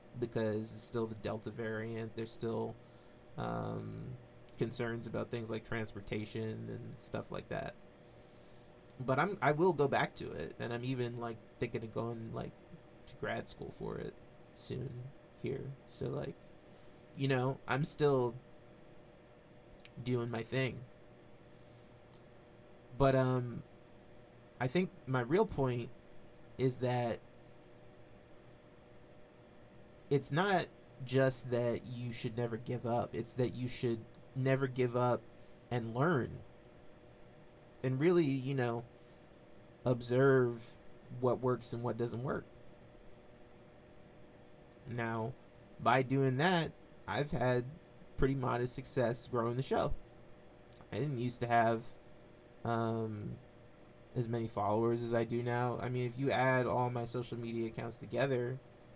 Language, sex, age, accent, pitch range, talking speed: English, male, 20-39, American, 115-130 Hz, 125 wpm